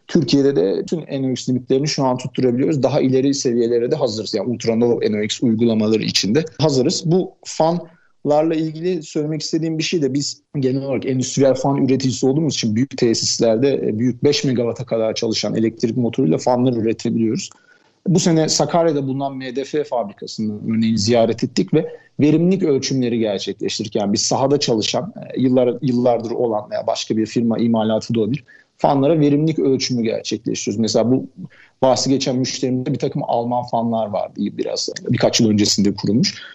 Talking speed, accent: 150 wpm, native